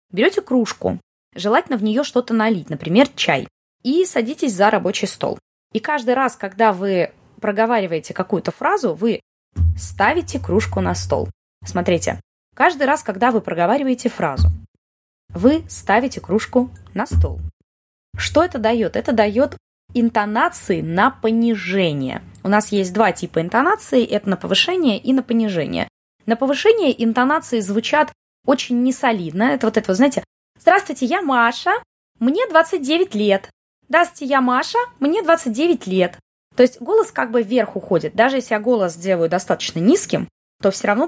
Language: Russian